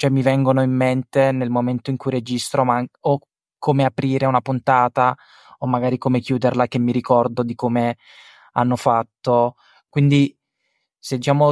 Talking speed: 155 wpm